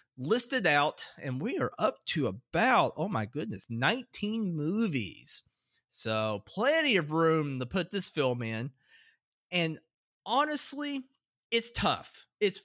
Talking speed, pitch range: 130 wpm, 125-185 Hz